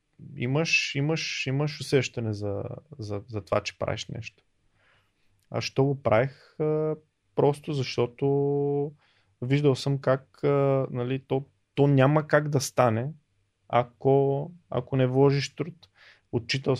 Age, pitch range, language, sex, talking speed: 20-39, 110-140 Hz, Bulgarian, male, 115 wpm